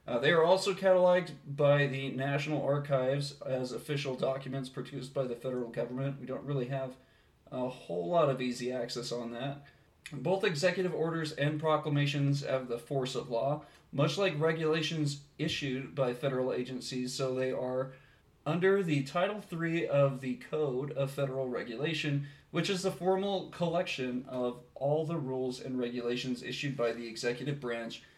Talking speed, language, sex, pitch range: 160 wpm, English, male, 125-155 Hz